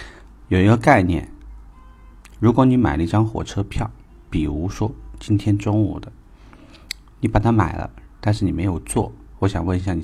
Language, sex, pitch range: Chinese, male, 85-105 Hz